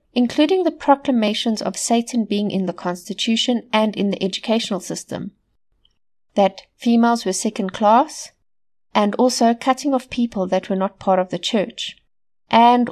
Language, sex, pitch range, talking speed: English, female, 190-240 Hz, 150 wpm